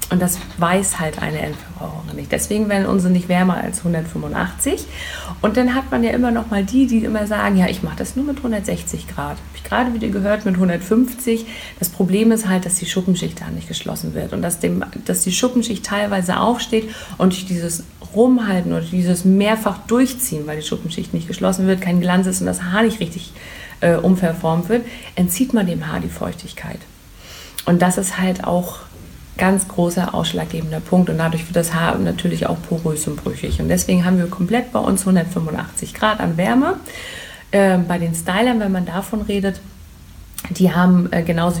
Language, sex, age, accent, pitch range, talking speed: German, female, 50-69, German, 170-210 Hz, 195 wpm